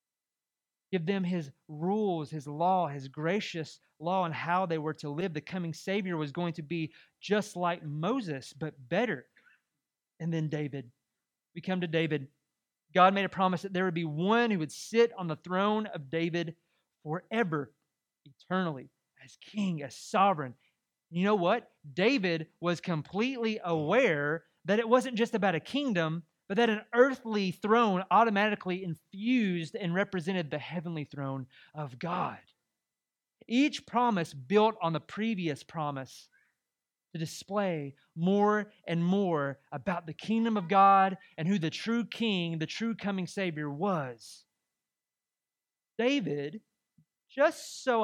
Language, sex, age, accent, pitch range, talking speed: English, male, 30-49, American, 160-210 Hz, 145 wpm